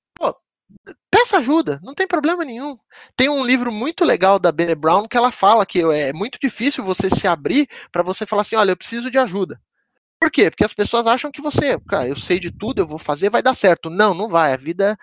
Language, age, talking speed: Portuguese, 20-39, 230 wpm